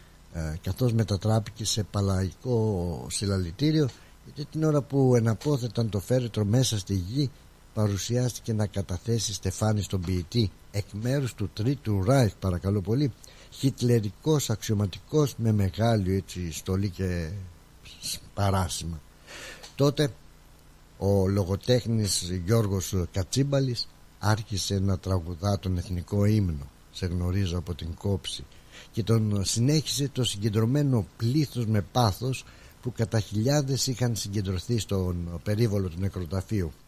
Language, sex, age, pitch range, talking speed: Greek, male, 60-79, 95-125 Hz, 110 wpm